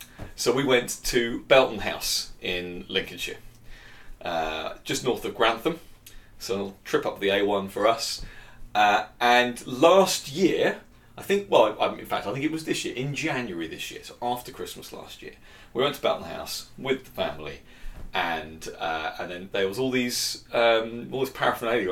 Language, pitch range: English, 100-140 Hz